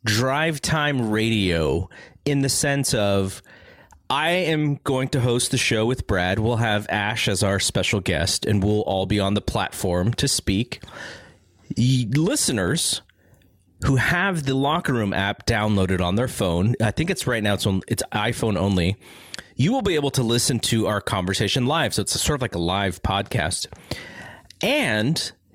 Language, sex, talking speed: English, male, 170 wpm